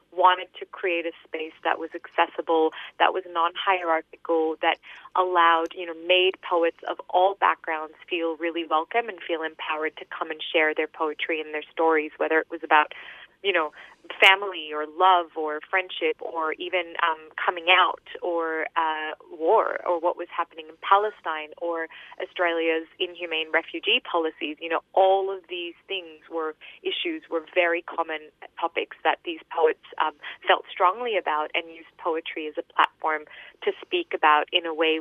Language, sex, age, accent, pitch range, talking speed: English, female, 20-39, American, 160-185 Hz, 165 wpm